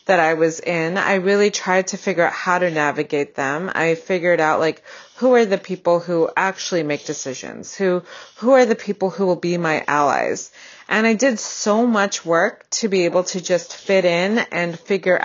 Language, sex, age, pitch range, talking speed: English, female, 30-49, 160-195 Hz, 200 wpm